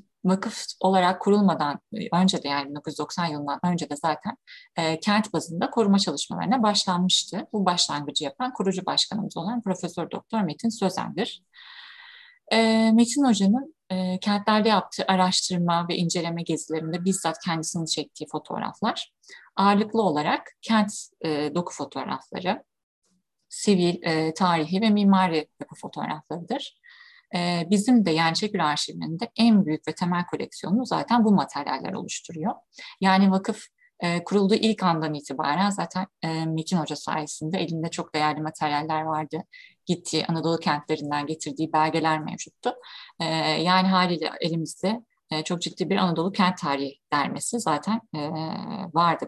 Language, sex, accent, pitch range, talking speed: Turkish, female, native, 160-210 Hz, 125 wpm